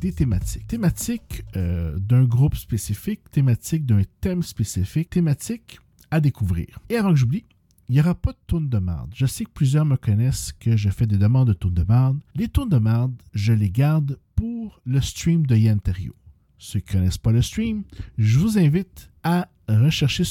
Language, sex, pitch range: French, male, 105-150 Hz